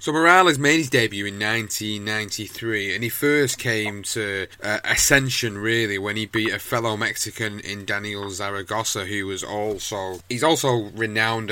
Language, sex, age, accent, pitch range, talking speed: English, male, 30-49, British, 100-115 Hz, 155 wpm